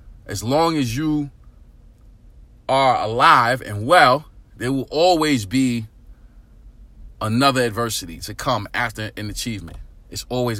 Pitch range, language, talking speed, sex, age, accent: 110-140 Hz, English, 120 wpm, male, 30-49, American